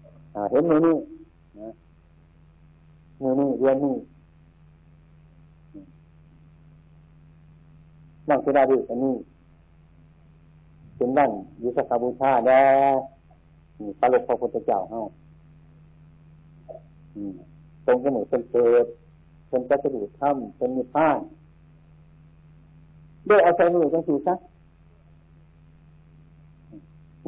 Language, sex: Thai, male